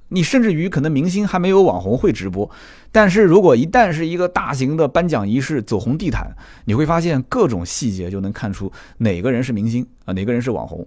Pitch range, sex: 100-150 Hz, male